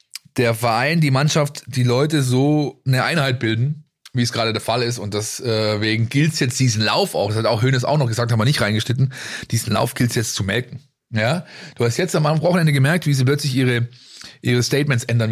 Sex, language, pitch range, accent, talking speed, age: male, German, 115-140 Hz, German, 215 wpm, 30-49